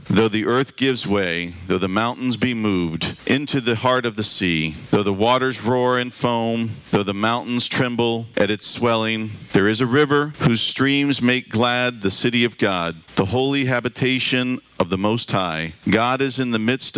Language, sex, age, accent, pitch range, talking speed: English, male, 50-69, American, 110-130 Hz, 185 wpm